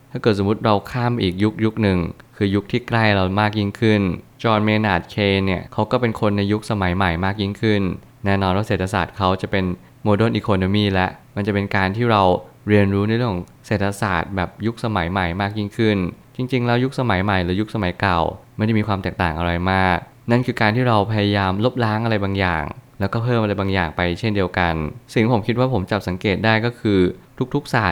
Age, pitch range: 20-39, 95-115 Hz